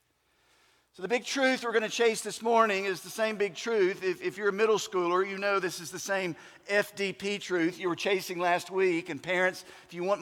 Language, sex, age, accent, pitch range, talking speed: English, male, 50-69, American, 180-240 Hz, 230 wpm